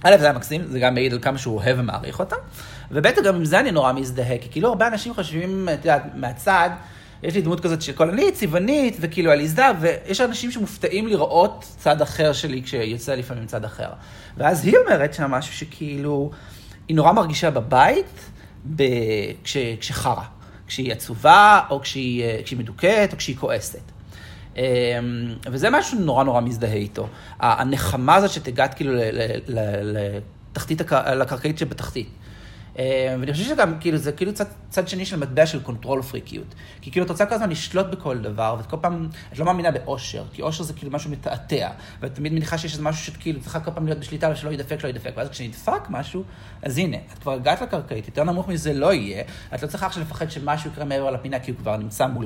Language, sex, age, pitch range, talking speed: Hebrew, male, 40-59, 120-165 Hz, 175 wpm